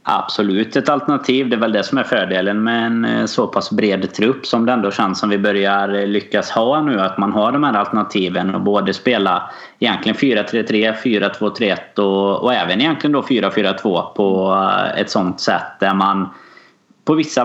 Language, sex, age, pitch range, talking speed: Swedish, male, 20-39, 95-110 Hz, 175 wpm